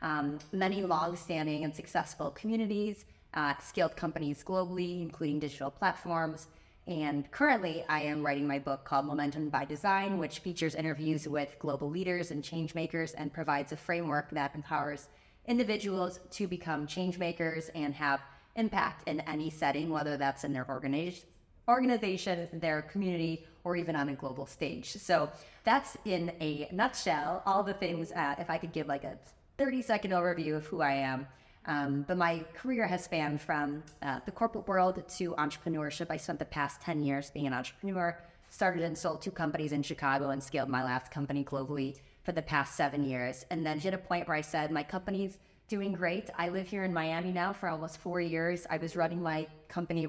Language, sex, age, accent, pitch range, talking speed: English, female, 20-39, American, 145-180 Hz, 180 wpm